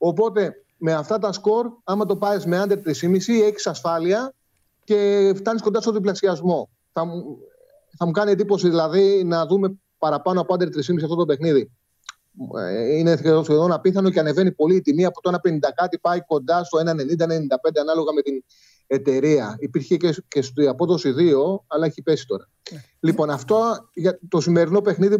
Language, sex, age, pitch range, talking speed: Greek, male, 30-49, 150-195 Hz, 170 wpm